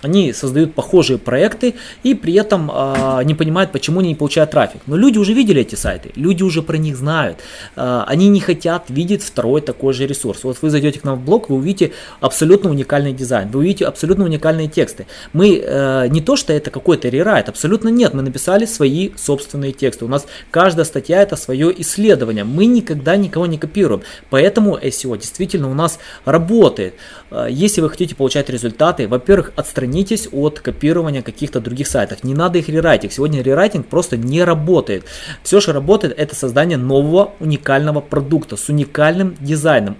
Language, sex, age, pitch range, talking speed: Russian, male, 20-39, 135-180 Hz, 175 wpm